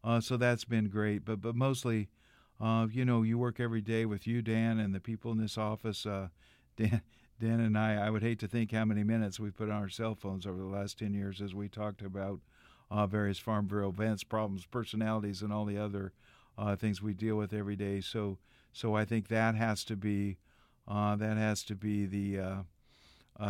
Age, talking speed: 50-69, 215 wpm